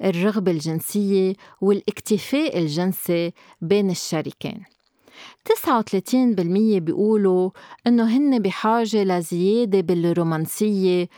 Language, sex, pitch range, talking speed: Arabic, female, 190-240 Hz, 70 wpm